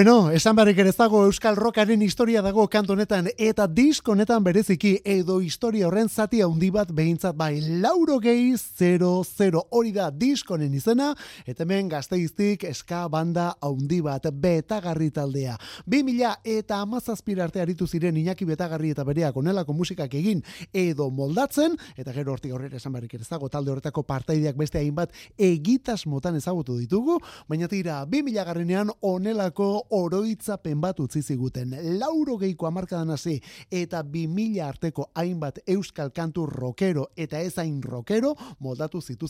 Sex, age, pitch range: male, 30-49, 145-205 Hz